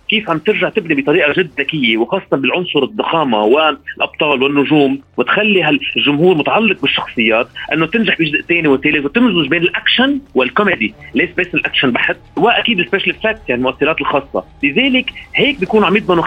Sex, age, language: male, 30-49, Arabic